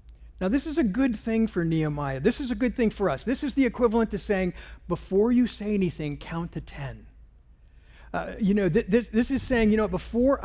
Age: 50-69